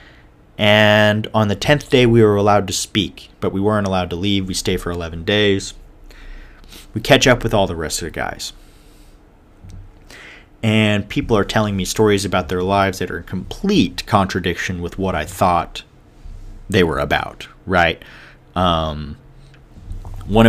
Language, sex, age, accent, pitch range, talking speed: English, male, 30-49, American, 85-100 Hz, 160 wpm